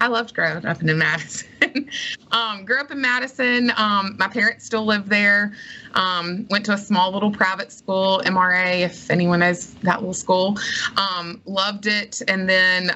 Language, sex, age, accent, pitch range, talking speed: English, female, 20-39, American, 170-220 Hz, 170 wpm